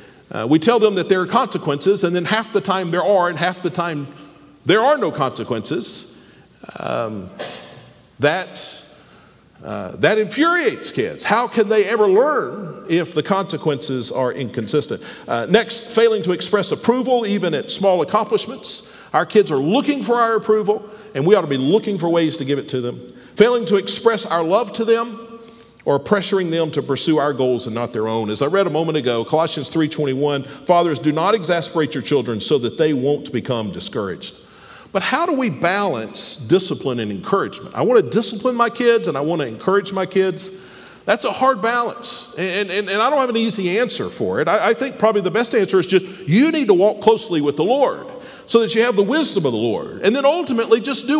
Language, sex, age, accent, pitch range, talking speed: English, male, 50-69, American, 160-230 Hz, 205 wpm